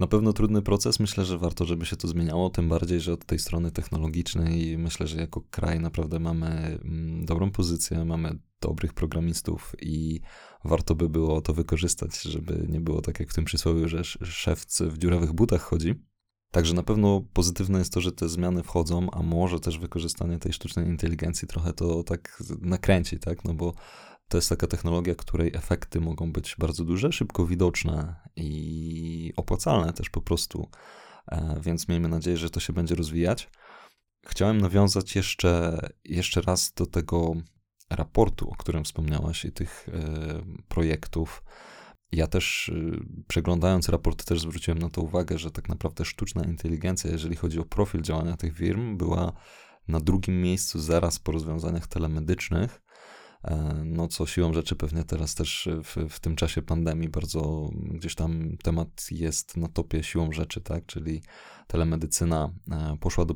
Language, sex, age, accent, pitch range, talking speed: Polish, male, 20-39, native, 80-90 Hz, 160 wpm